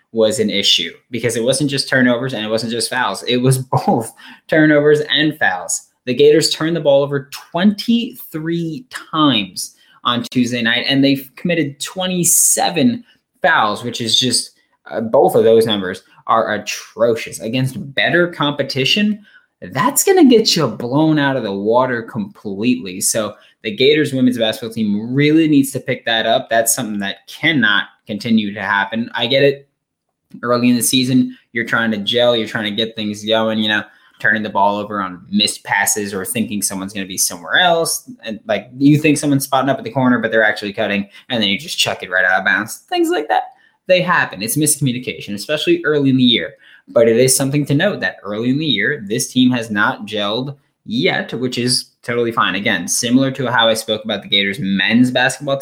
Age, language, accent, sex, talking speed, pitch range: 20-39, English, American, male, 195 wpm, 110-150 Hz